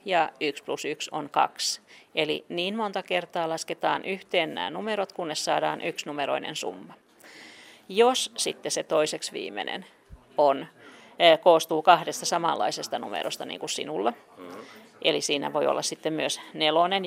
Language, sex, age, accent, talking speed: Finnish, female, 40-59, native, 135 wpm